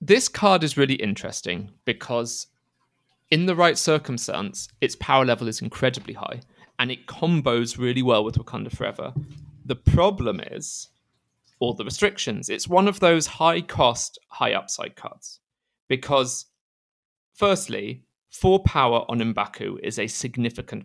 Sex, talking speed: male, 140 wpm